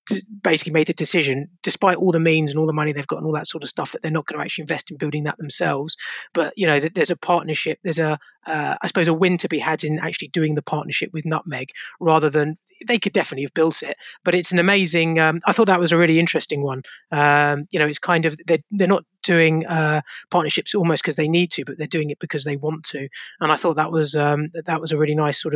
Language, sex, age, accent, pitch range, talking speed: English, male, 20-39, British, 150-175 Hz, 265 wpm